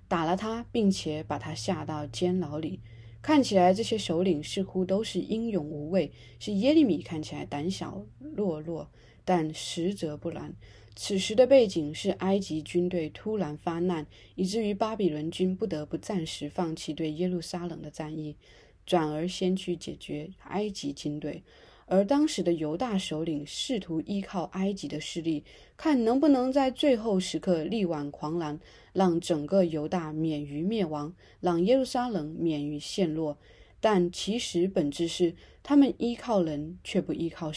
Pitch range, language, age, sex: 155-200 Hz, Chinese, 20-39, female